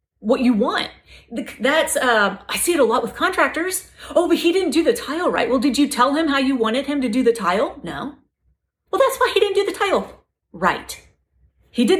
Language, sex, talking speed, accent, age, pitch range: English, female, 225 wpm, American, 30-49, 210-310 Hz